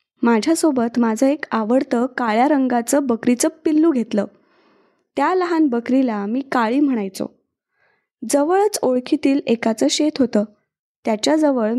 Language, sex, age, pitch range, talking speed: Marathi, female, 20-39, 235-305 Hz, 105 wpm